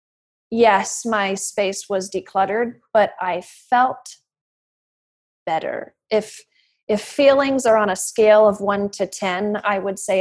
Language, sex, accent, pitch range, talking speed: English, female, American, 190-225 Hz, 135 wpm